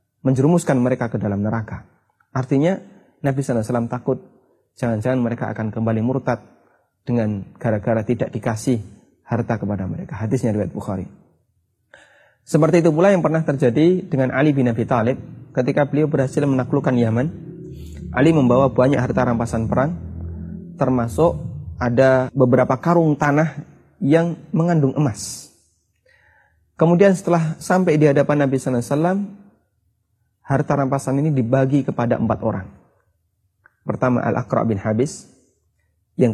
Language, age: Indonesian, 30-49